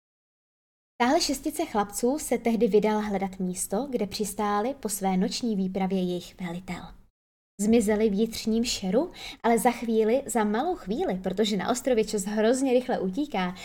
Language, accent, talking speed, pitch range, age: Czech, native, 145 wpm, 200-245 Hz, 20-39